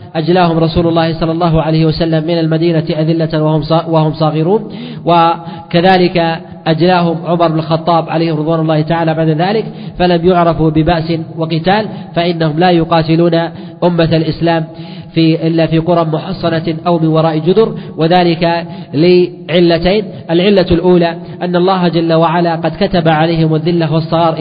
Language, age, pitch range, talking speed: Arabic, 40-59, 165-180 Hz, 130 wpm